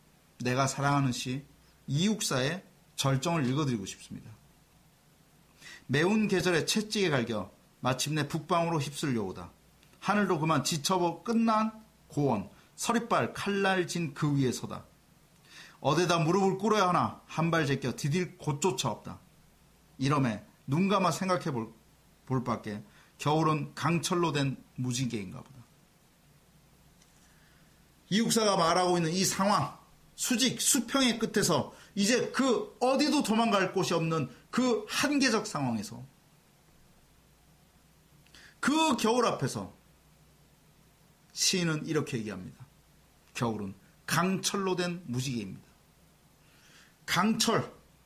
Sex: male